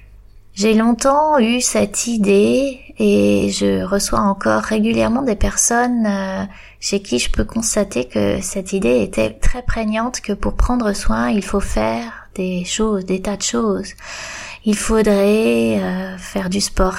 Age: 20-39